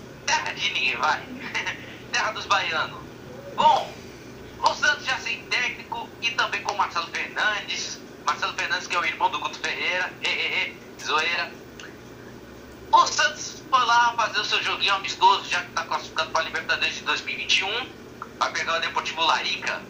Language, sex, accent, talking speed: Portuguese, male, Brazilian, 165 wpm